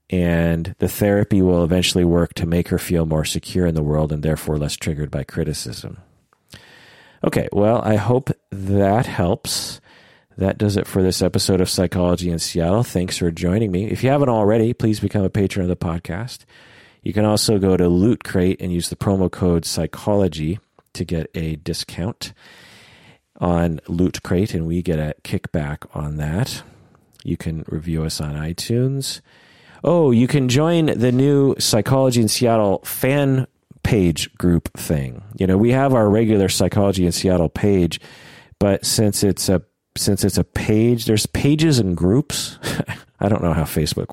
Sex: male